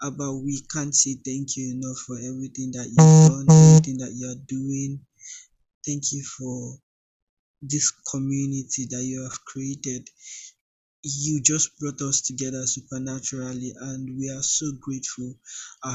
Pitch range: 130-145 Hz